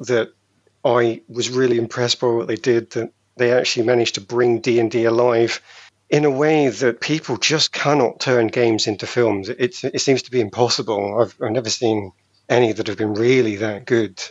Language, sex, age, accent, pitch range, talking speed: English, male, 40-59, British, 115-140 Hz, 190 wpm